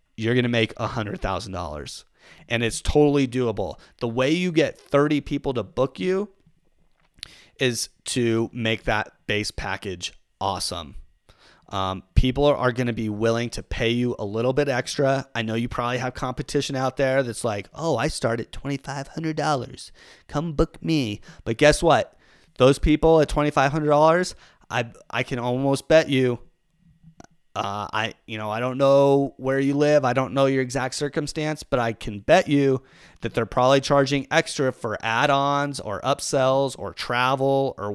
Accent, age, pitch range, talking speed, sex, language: American, 30-49, 115-145 Hz, 170 wpm, male, English